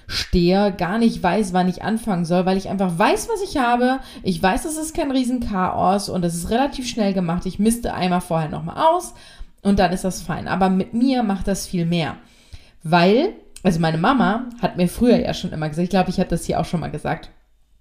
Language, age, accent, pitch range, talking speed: German, 20-39, German, 180-240 Hz, 220 wpm